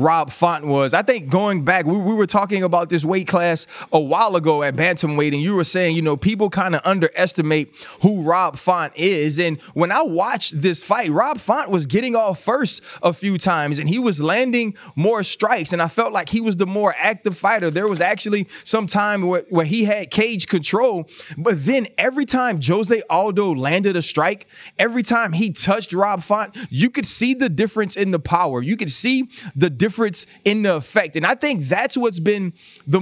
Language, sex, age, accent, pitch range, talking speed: English, male, 20-39, American, 165-210 Hz, 205 wpm